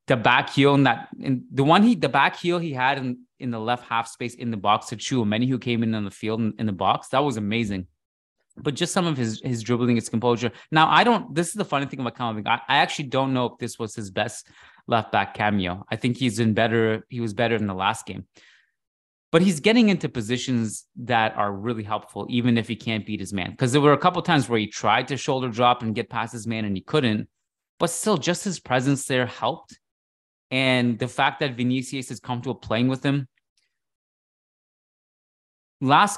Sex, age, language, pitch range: male, 20-39, English, 105-135 Hz